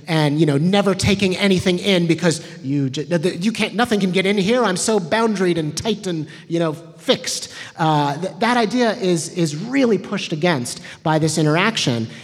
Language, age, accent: English, 30-49, American